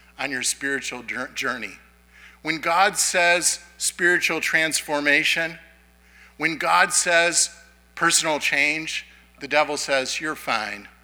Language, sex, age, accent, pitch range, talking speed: English, male, 50-69, American, 125-165 Hz, 105 wpm